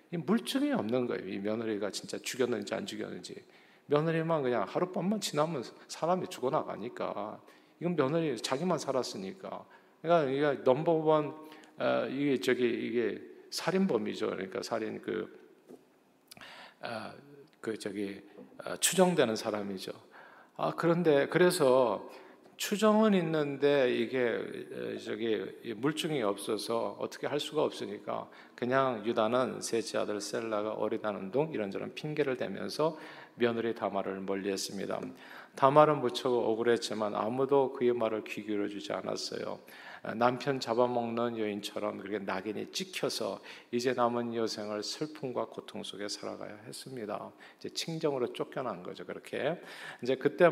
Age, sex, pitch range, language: 40-59, male, 110-145 Hz, Korean